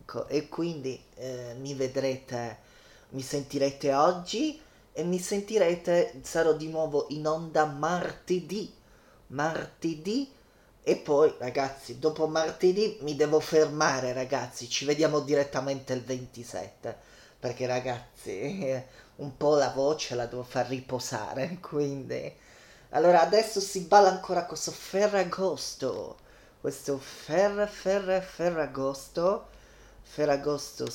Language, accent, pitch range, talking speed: Italian, native, 130-175 Hz, 105 wpm